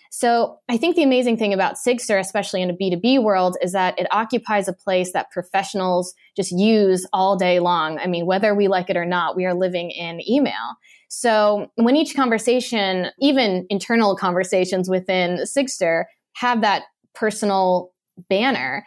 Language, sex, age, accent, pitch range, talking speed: English, female, 20-39, American, 190-245 Hz, 165 wpm